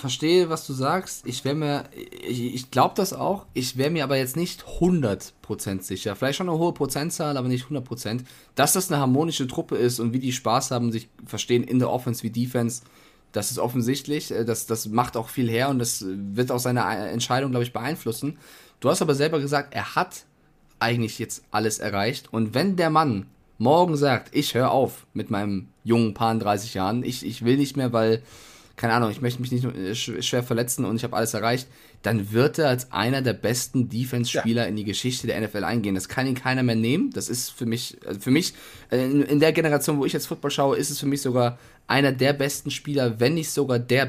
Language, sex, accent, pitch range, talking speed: German, male, German, 115-140 Hz, 215 wpm